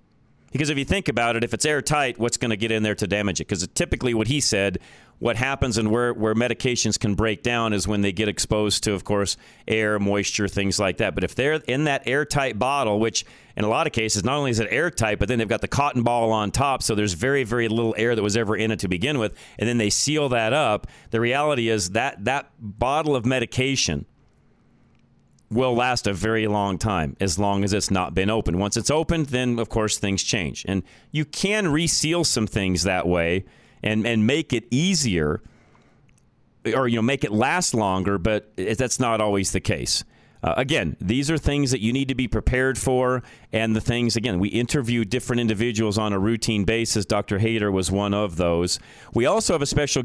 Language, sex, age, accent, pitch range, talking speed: English, male, 40-59, American, 105-125 Hz, 220 wpm